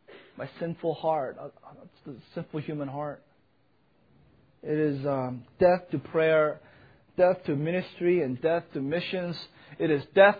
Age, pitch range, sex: 30-49, 145-205 Hz, male